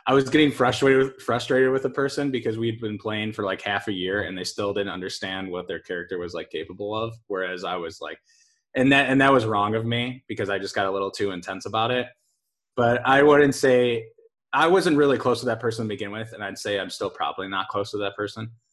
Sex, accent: male, American